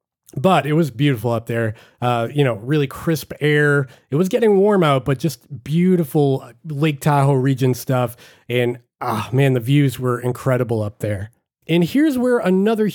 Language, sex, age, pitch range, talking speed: English, male, 30-49, 130-175 Hz, 170 wpm